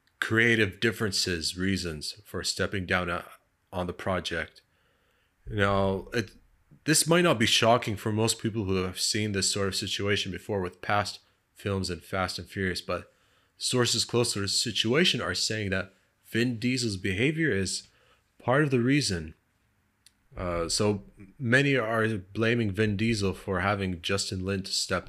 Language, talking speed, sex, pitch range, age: English, 155 wpm, male, 95-110 Hz, 30-49